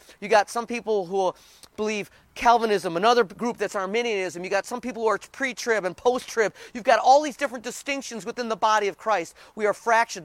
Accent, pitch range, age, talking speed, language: American, 175-235 Hz, 30-49, 200 wpm, English